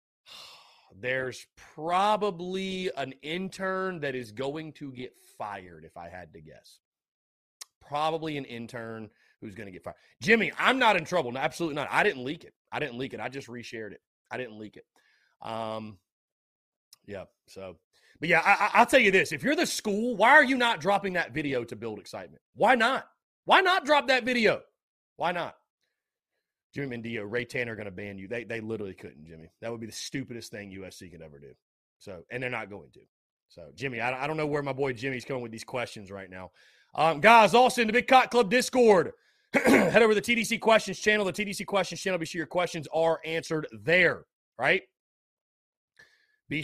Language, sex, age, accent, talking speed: English, male, 30-49, American, 200 wpm